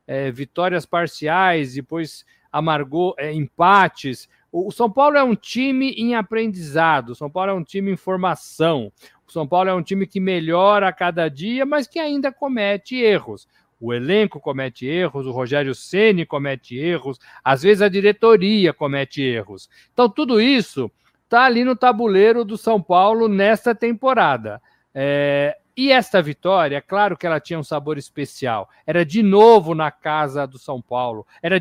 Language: Portuguese